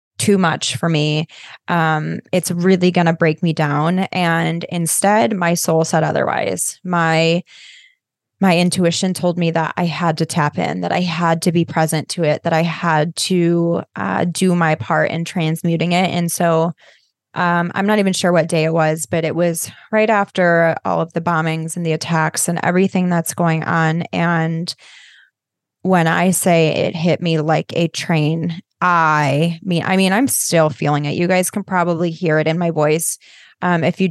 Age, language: 20-39, English